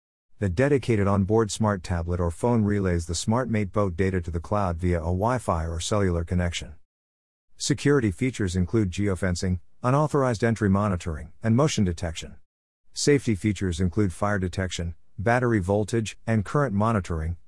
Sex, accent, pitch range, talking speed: male, American, 90-110 Hz, 145 wpm